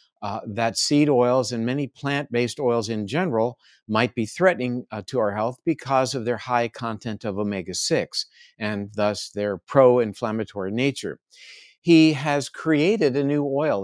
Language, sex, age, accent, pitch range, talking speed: English, male, 50-69, American, 115-145 Hz, 150 wpm